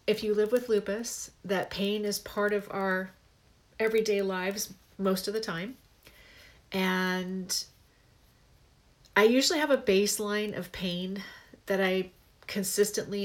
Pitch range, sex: 185-205 Hz, female